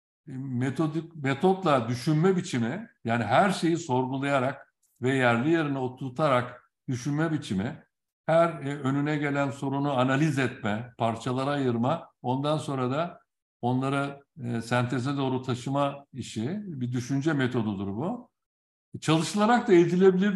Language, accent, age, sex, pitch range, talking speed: Turkish, native, 60-79, male, 125-175 Hz, 115 wpm